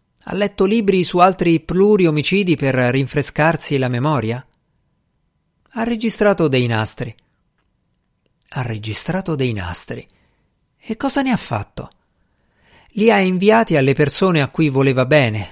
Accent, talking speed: native, 130 wpm